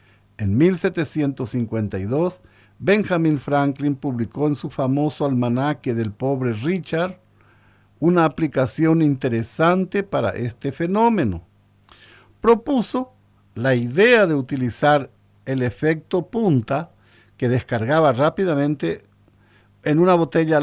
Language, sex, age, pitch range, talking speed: Spanish, male, 60-79, 110-160 Hz, 95 wpm